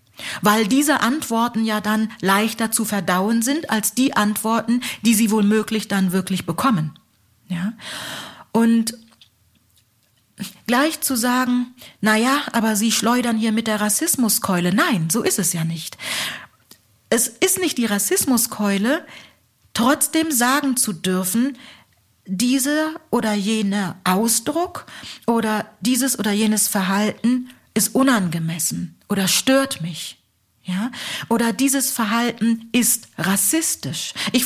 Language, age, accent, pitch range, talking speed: German, 40-59, German, 195-240 Hz, 115 wpm